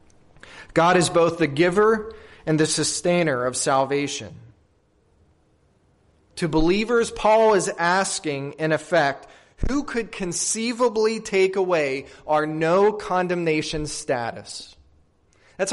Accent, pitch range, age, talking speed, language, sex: American, 115-180 Hz, 30-49, 100 wpm, English, male